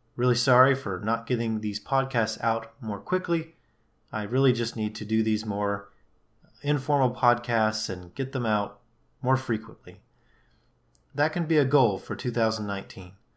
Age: 30-49